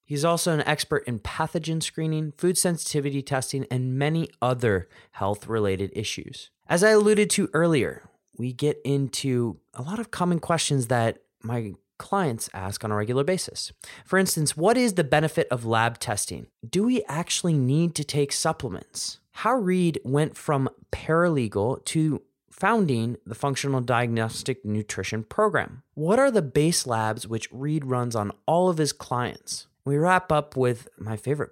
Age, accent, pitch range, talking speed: 20-39, American, 115-165 Hz, 160 wpm